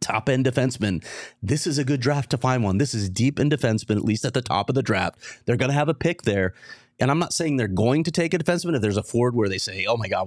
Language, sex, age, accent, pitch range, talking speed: English, male, 30-49, American, 100-125 Hz, 300 wpm